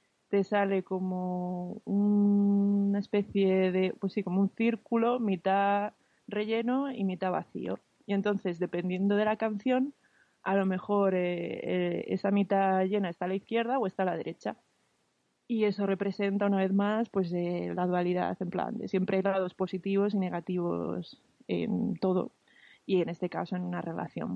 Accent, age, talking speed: Spanish, 20-39, 165 wpm